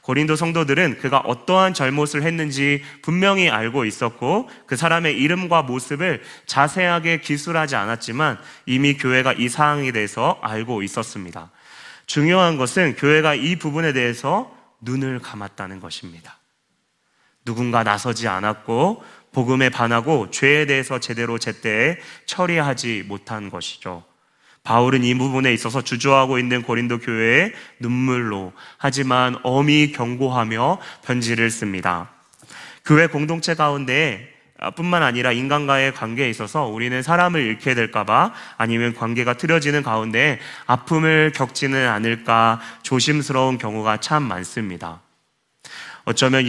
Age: 30-49